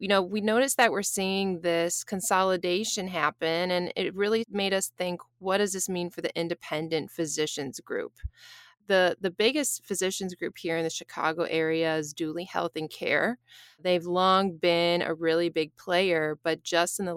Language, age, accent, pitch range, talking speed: English, 20-39, American, 165-195 Hz, 180 wpm